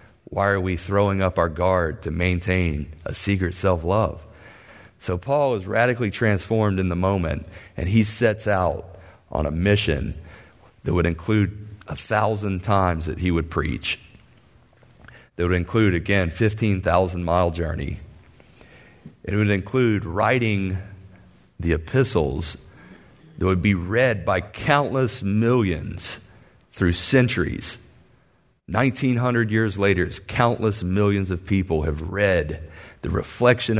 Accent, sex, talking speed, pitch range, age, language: American, male, 125 wpm, 90-110 Hz, 40-59, English